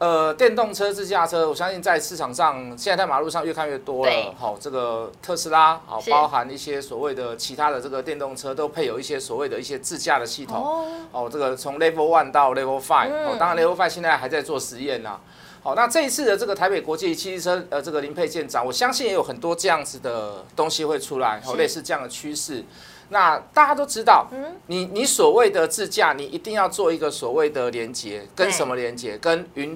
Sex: male